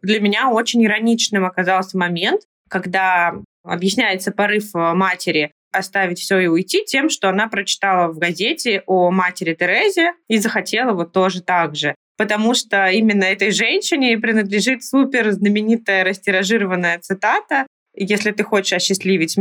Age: 20-39